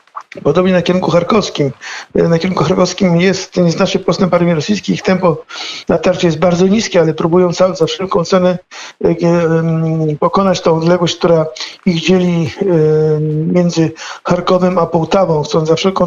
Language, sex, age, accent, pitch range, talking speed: Polish, male, 50-69, native, 165-180 Hz, 135 wpm